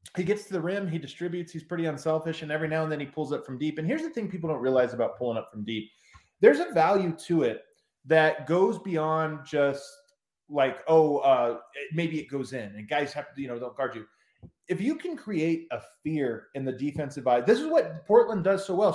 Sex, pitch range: male, 140-185 Hz